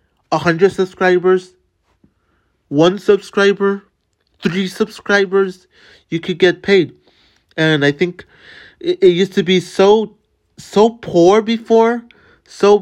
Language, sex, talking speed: English, male, 110 wpm